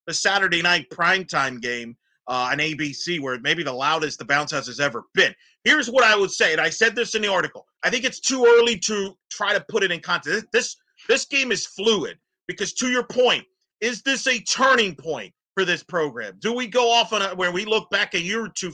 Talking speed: 235 wpm